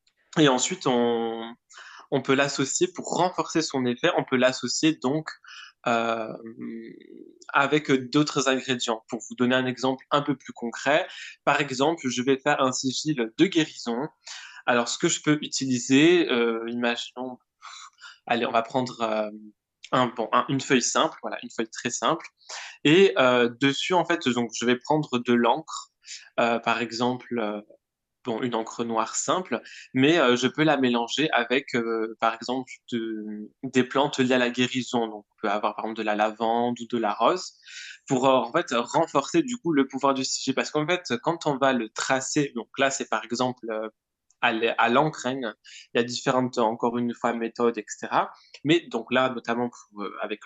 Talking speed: 180 wpm